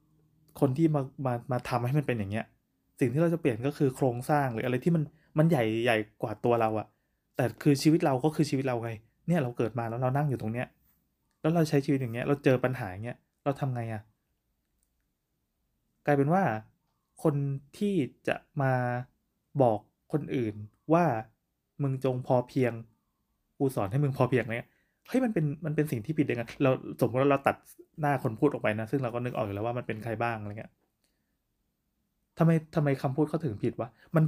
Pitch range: 120-155 Hz